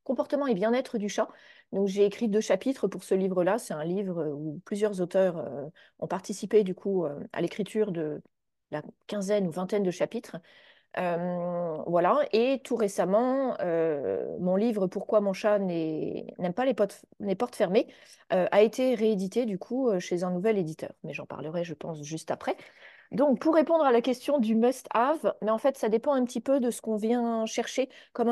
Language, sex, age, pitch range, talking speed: French, female, 30-49, 195-235 Hz, 200 wpm